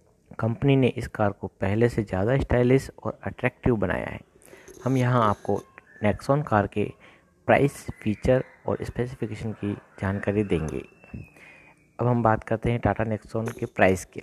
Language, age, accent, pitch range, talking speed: Hindi, 50-69, native, 100-120 Hz, 150 wpm